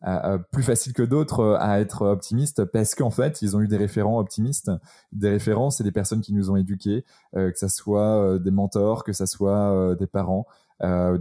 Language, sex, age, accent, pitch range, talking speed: French, male, 20-39, French, 95-115 Hz, 220 wpm